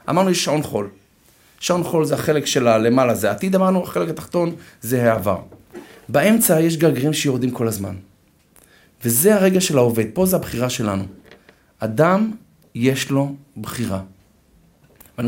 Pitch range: 115-165 Hz